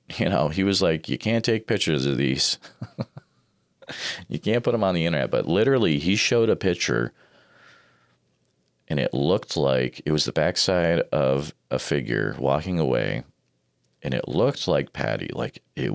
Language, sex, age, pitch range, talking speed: English, male, 40-59, 65-90 Hz, 165 wpm